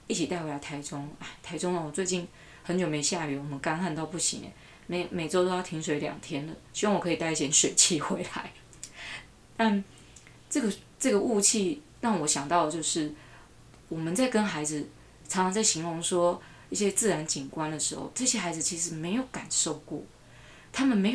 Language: Chinese